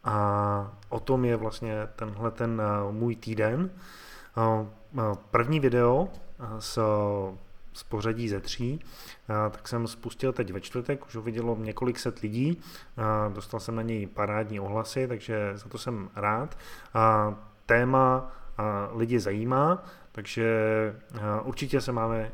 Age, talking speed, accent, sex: 20-39, 150 wpm, native, male